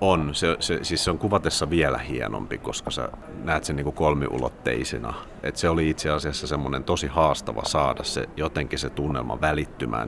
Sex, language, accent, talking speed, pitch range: male, Finnish, native, 165 wpm, 70-80 Hz